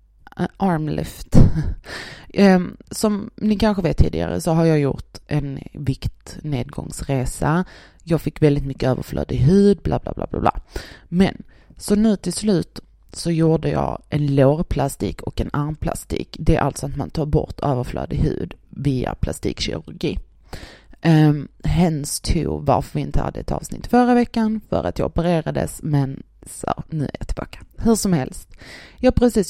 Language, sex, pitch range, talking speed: Swedish, female, 145-205 Hz, 150 wpm